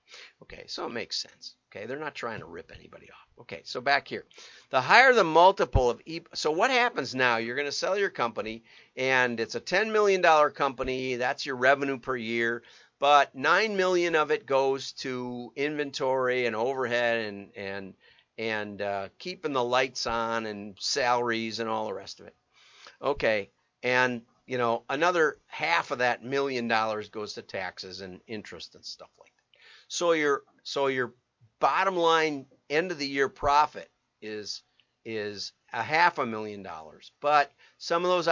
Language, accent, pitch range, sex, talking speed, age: English, American, 110-140 Hz, male, 175 wpm, 50-69